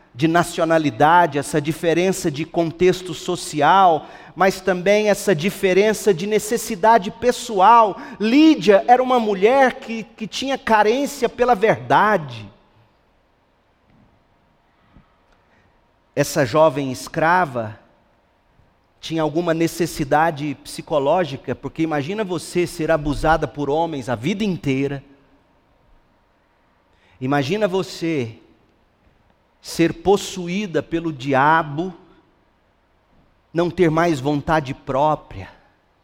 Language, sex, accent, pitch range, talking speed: Portuguese, male, Brazilian, 135-185 Hz, 85 wpm